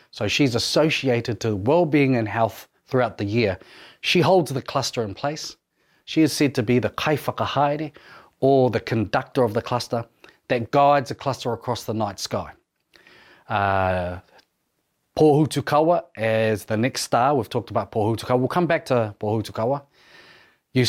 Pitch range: 110-145 Hz